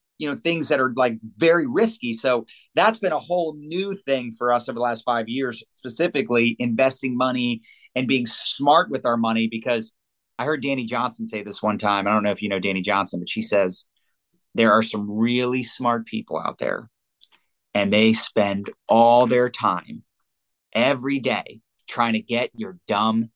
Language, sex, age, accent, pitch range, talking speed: English, male, 30-49, American, 115-140 Hz, 185 wpm